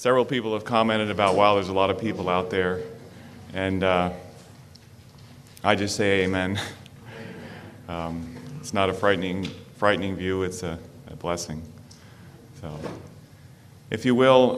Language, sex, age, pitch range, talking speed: English, male, 30-49, 90-115 Hz, 140 wpm